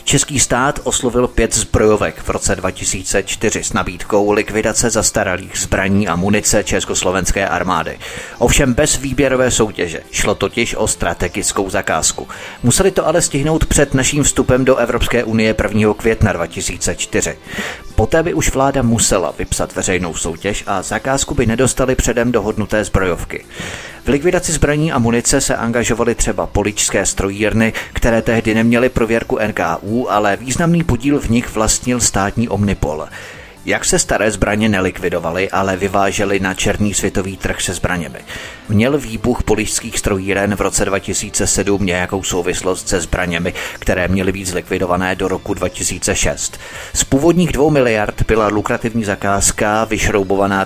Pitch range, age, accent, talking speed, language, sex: 95-120 Hz, 30-49, native, 135 wpm, Czech, male